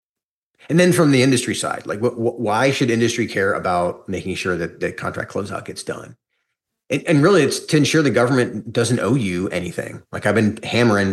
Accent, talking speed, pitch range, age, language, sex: American, 205 wpm, 100-120 Hz, 30-49, English, male